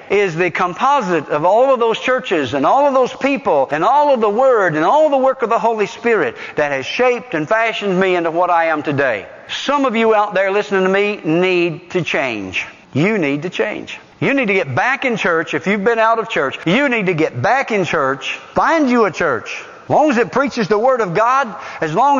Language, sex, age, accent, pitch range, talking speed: English, male, 50-69, American, 160-255 Hz, 235 wpm